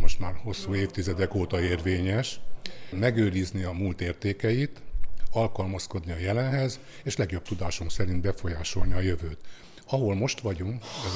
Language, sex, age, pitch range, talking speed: Hungarian, male, 60-79, 95-110 Hz, 130 wpm